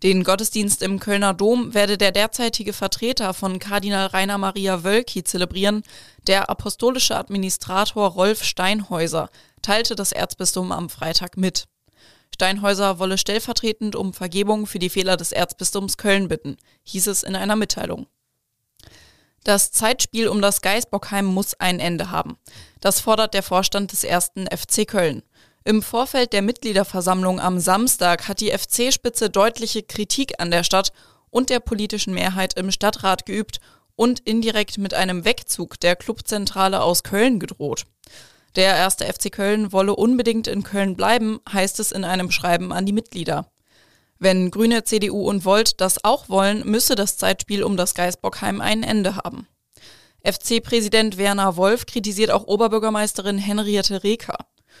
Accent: German